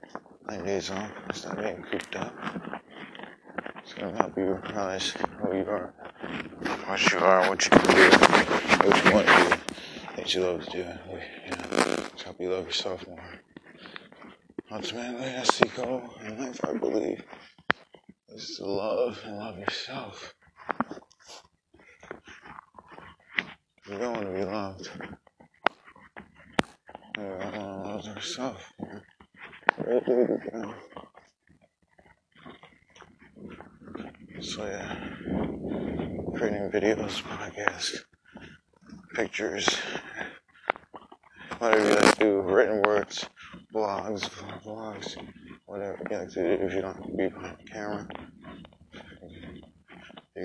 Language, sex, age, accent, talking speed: English, male, 20-39, American, 120 wpm